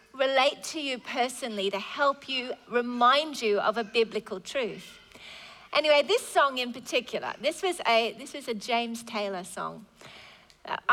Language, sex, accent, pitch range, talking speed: English, female, Australian, 220-300 Hz, 145 wpm